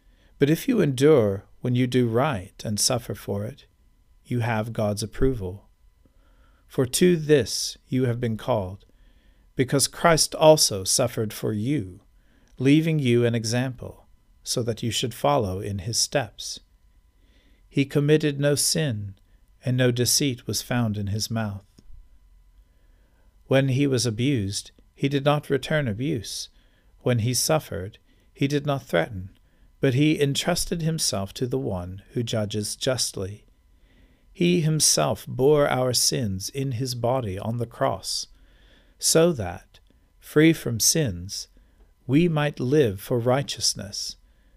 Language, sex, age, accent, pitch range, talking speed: English, male, 50-69, American, 100-140 Hz, 135 wpm